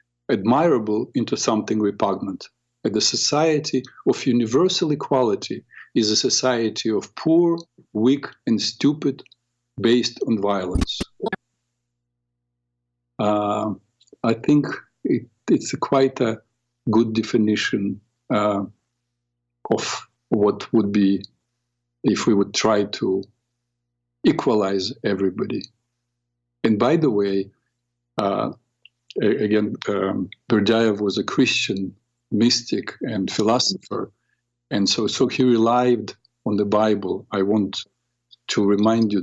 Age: 50-69